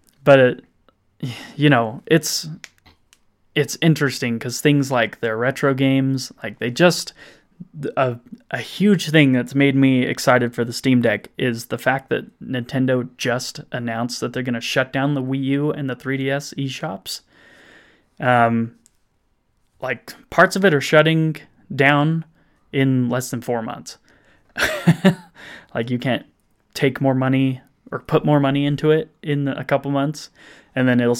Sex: male